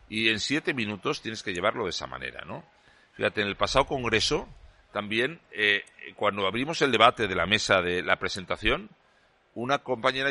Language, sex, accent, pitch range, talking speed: Spanish, male, Spanish, 110-150 Hz, 175 wpm